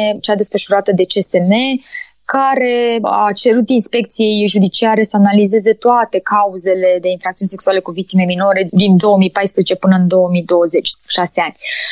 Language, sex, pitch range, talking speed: Romanian, female, 200-250 Hz, 125 wpm